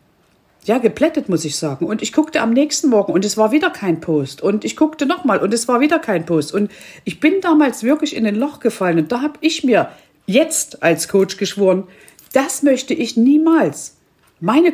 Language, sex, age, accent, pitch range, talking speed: German, female, 50-69, German, 210-305 Hz, 205 wpm